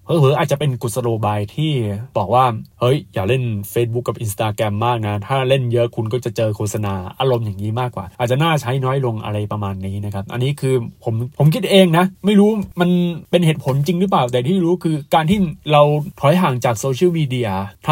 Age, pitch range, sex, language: 20-39, 115-155 Hz, male, Thai